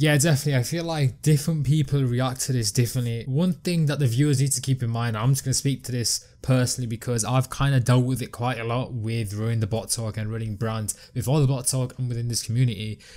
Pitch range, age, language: 110-130 Hz, 20-39, English